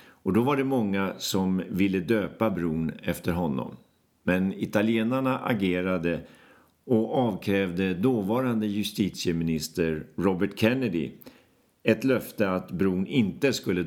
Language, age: Swedish, 50-69